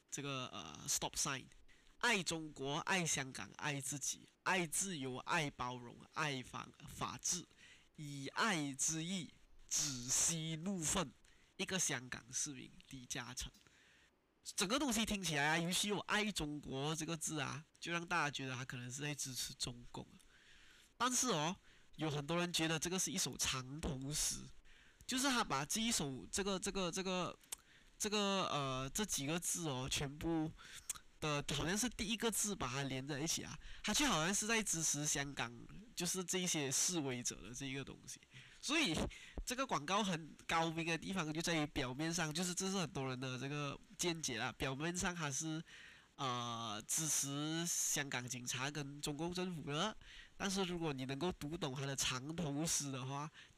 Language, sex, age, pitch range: Chinese, male, 20-39, 135-180 Hz